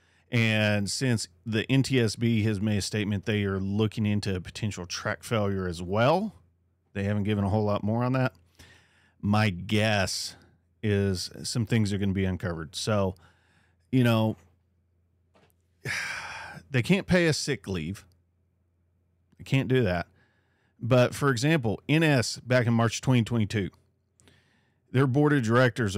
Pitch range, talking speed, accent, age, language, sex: 90-120 Hz, 145 wpm, American, 40-59, English, male